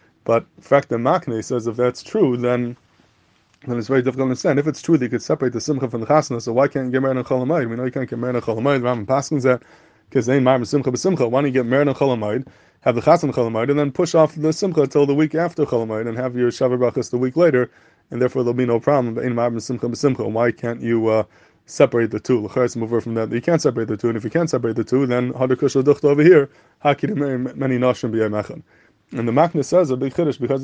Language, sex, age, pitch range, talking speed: English, male, 20-39, 120-145 Hz, 245 wpm